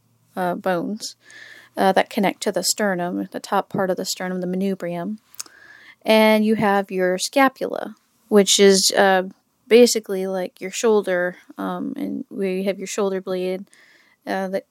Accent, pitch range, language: American, 195-235 Hz, English